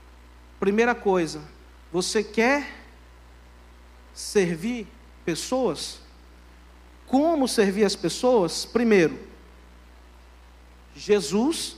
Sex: male